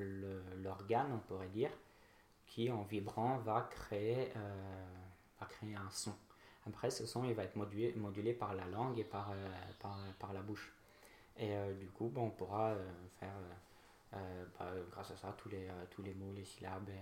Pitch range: 95-110 Hz